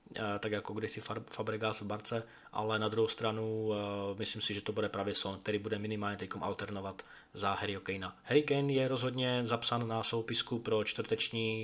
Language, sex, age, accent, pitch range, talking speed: Czech, male, 20-39, native, 105-115 Hz, 175 wpm